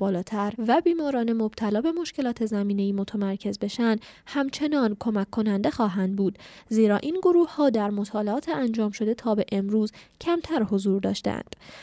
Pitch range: 205-270 Hz